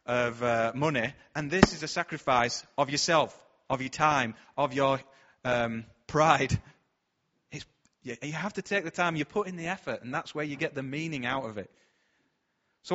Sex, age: male, 30-49